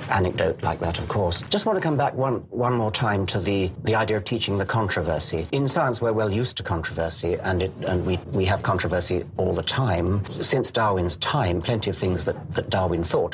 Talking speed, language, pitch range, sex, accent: 220 wpm, English, 90-115 Hz, male, British